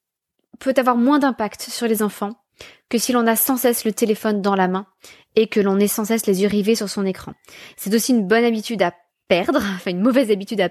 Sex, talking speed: female, 235 wpm